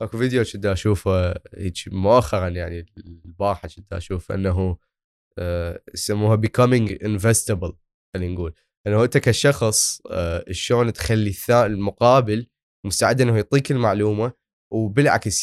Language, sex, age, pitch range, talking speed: Arabic, male, 20-39, 95-120 Hz, 105 wpm